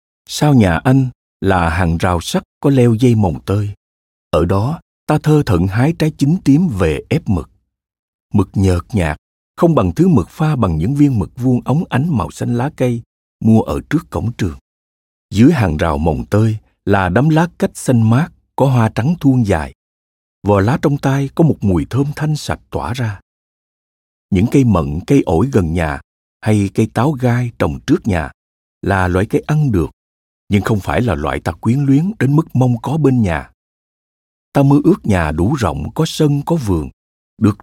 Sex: male